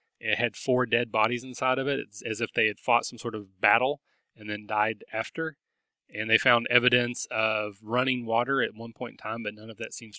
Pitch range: 110-130 Hz